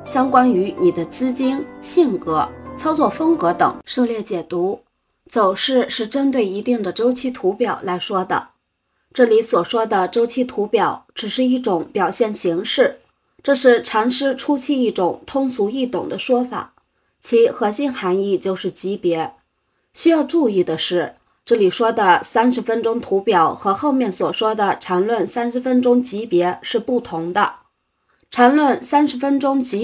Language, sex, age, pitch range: Chinese, female, 20-39, 200-260 Hz